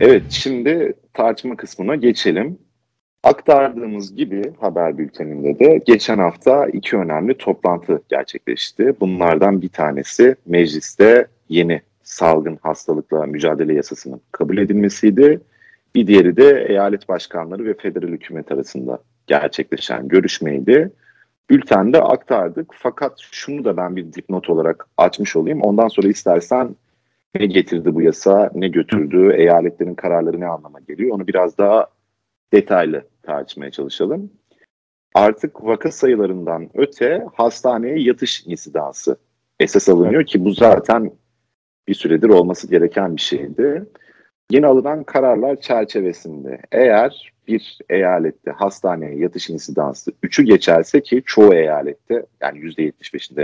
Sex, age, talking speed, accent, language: male, 40-59, 120 wpm, native, Turkish